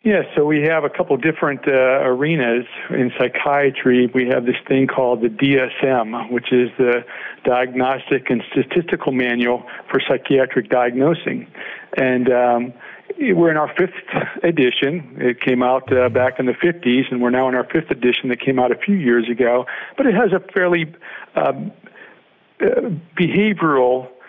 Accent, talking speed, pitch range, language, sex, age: American, 165 wpm, 125-145 Hz, English, male, 50-69